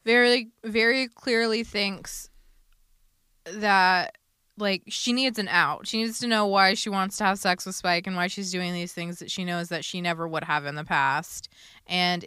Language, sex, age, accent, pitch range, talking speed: English, female, 20-39, American, 165-195 Hz, 195 wpm